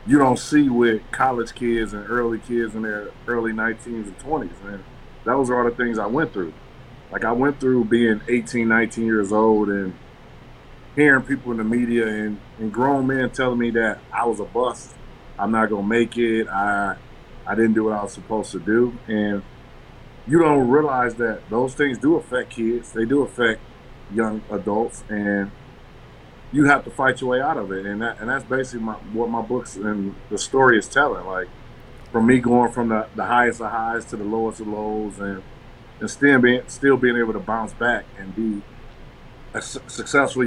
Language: English